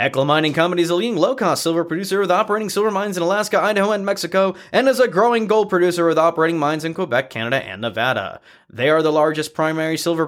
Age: 20-39